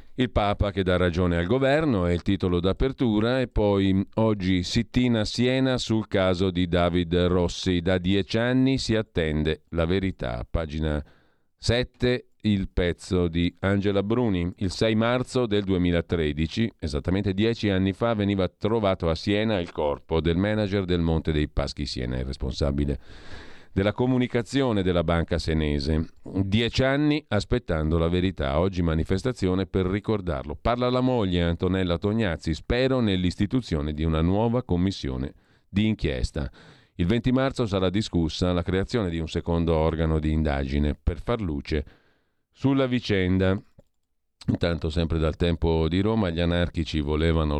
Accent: native